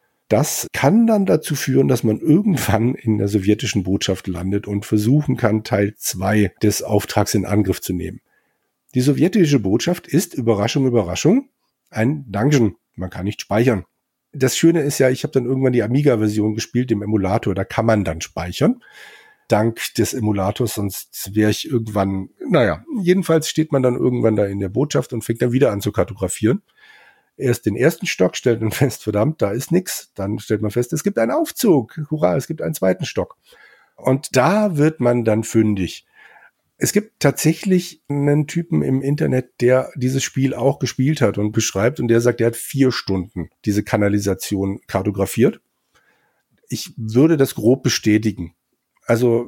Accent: German